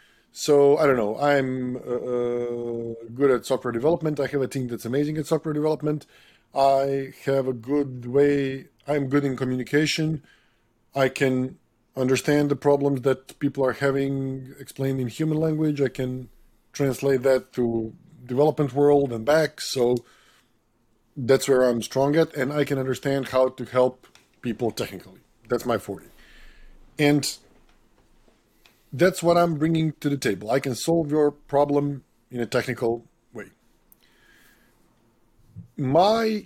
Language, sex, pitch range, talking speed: English, male, 125-155 Hz, 140 wpm